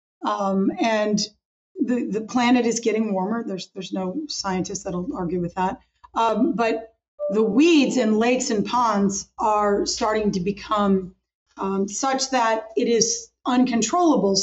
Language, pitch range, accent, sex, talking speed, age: English, 210-260 Hz, American, female, 140 wpm, 30-49